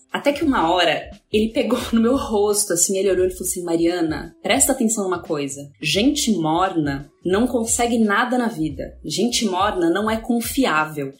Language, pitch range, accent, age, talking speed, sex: Portuguese, 180-255 Hz, Brazilian, 20-39, 170 wpm, female